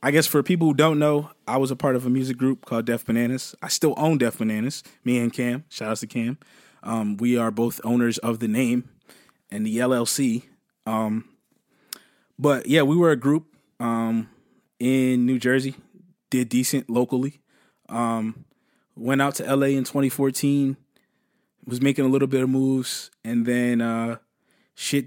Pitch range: 115-140 Hz